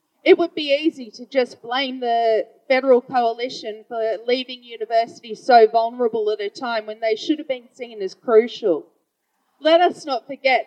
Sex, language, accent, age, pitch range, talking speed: female, English, Australian, 30-49, 225-280 Hz, 170 wpm